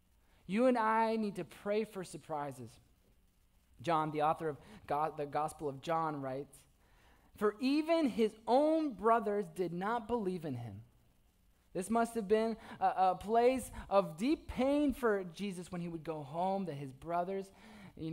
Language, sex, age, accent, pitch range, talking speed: English, male, 20-39, American, 145-230 Hz, 160 wpm